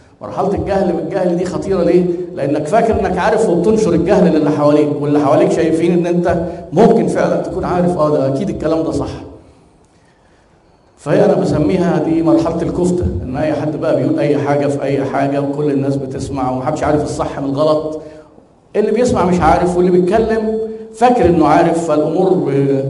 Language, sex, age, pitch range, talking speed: Arabic, male, 50-69, 145-190 Hz, 165 wpm